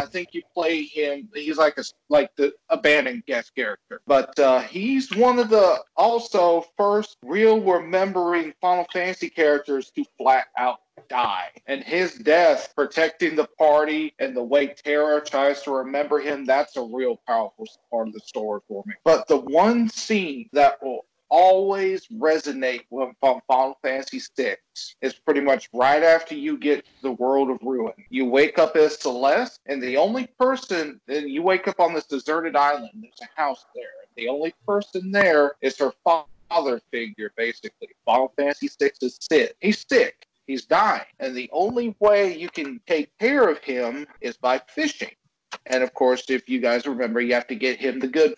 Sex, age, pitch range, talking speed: male, 40-59, 135-210 Hz, 175 wpm